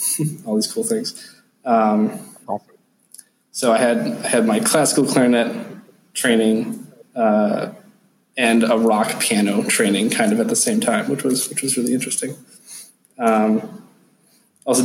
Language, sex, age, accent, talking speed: English, male, 20-39, American, 135 wpm